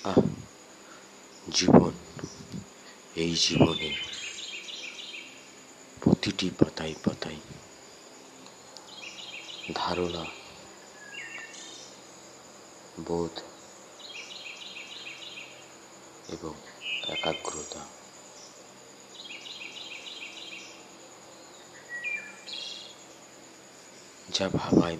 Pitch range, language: 65-75 Hz, Bengali